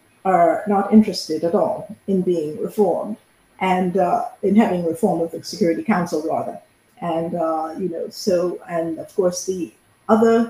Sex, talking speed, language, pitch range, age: female, 160 wpm, English, 170-210 Hz, 50-69